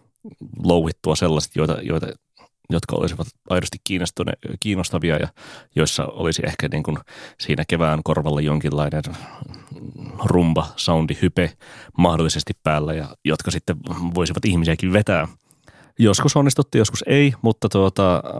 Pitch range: 85-115 Hz